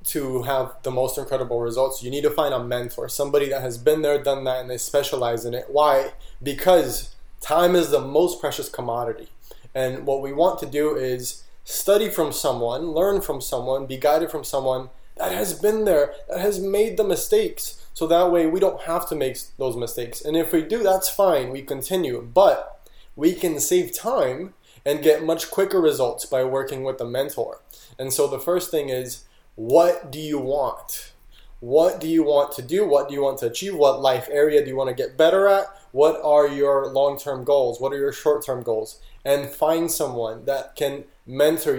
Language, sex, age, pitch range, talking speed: English, male, 20-39, 130-165 Hz, 200 wpm